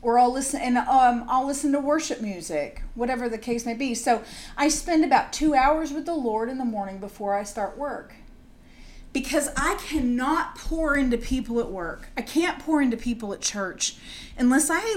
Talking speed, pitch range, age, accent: 195 wpm, 210-265 Hz, 40-59, American